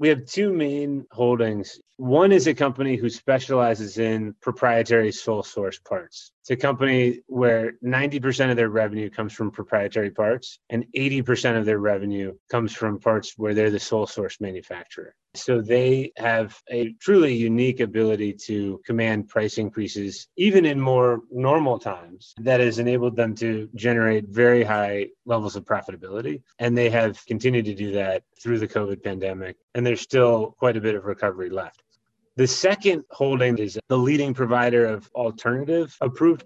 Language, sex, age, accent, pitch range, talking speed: English, male, 30-49, American, 110-135 Hz, 165 wpm